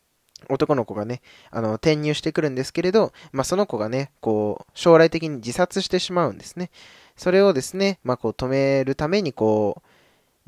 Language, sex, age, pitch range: Japanese, male, 20-39, 115-165 Hz